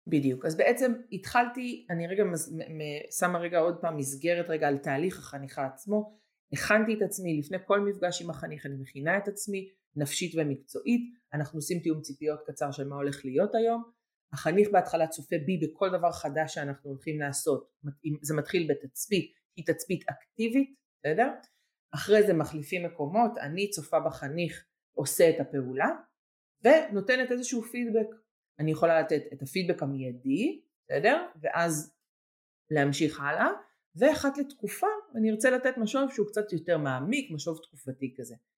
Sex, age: female, 30-49